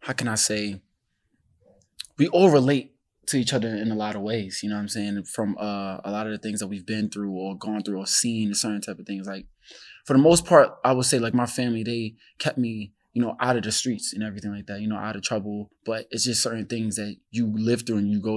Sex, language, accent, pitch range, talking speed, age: male, English, American, 100-115 Hz, 270 wpm, 20-39